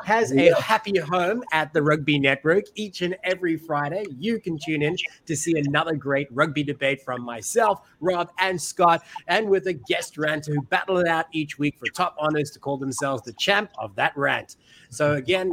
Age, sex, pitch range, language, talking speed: 30-49, male, 140-195 Hz, English, 195 wpm